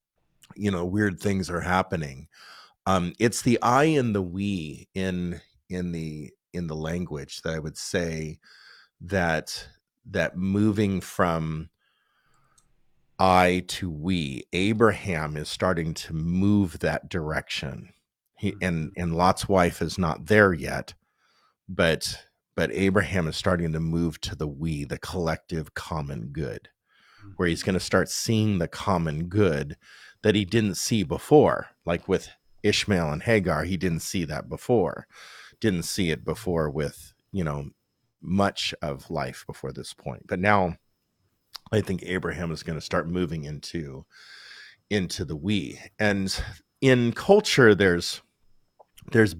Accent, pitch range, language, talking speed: American, 80-105 Hz, English, 140 wpm